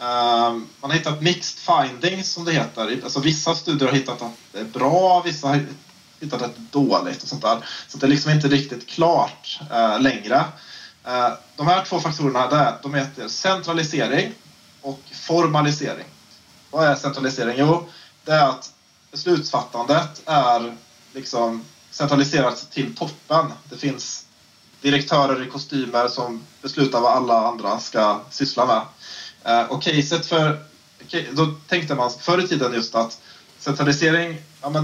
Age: 20-39